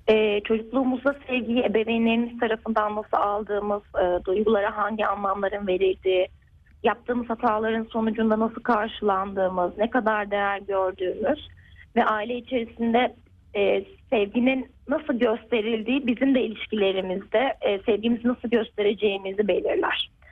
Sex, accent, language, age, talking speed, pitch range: female, native, Turkish, 30-49, 105 wpm, 200-250 Hz